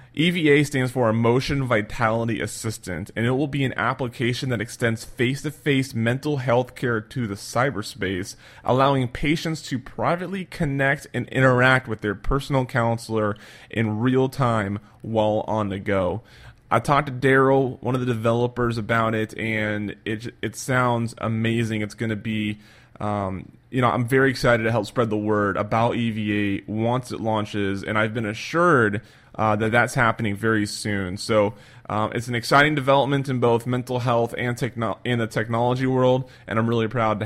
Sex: male